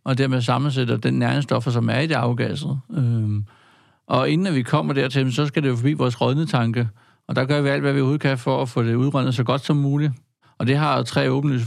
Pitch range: 120-145 Hz